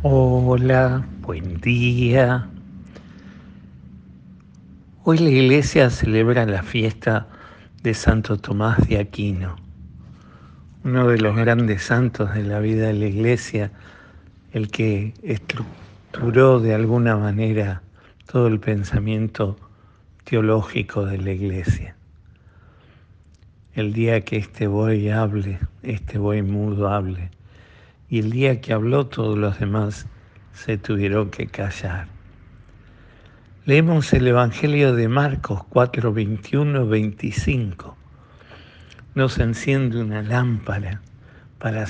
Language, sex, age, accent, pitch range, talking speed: Spanish, male, 50-69, Argentinian, 100-115 Hz, 105 wpm